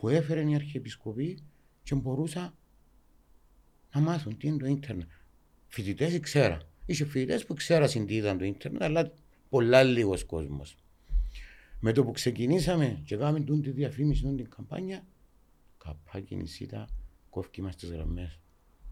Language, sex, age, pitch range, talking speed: Greek, male, 60-79, 85-140 Hz, 135 wpm